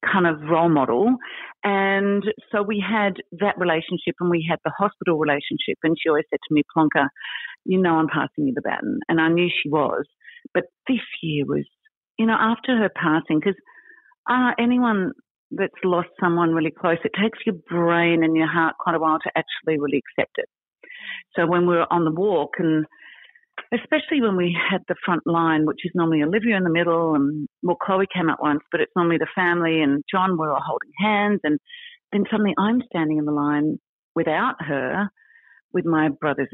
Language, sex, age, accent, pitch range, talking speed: English, female, 50-69, Australian, 160-205 Hz, 195 wpm